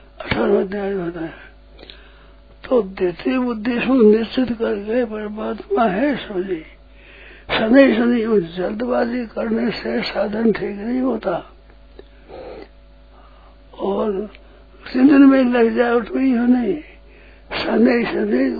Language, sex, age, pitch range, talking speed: Hindi, male, 60-79, 200-245 Hz, 95 wpm